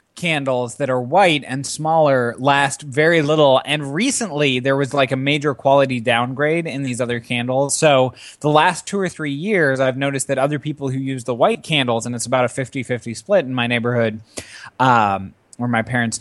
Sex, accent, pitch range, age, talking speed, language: male, American, 115-145 Hz, 20-39, 190 wpm, English